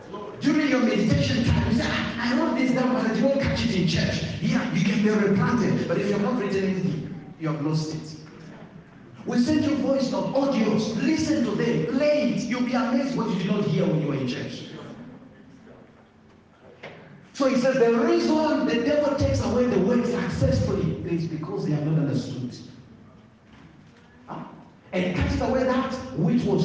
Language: English